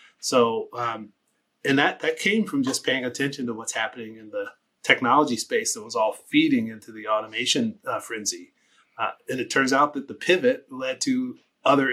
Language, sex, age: English, male, 30-49